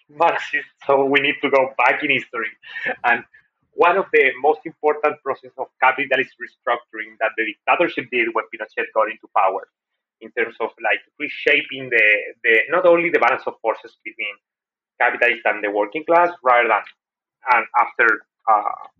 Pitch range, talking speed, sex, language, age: 115-150 Hz, 165 wpm, male, English, 30-49